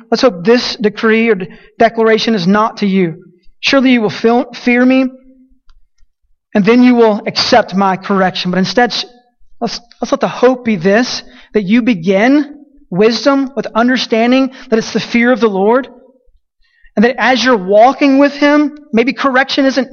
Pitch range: 200-245 Hz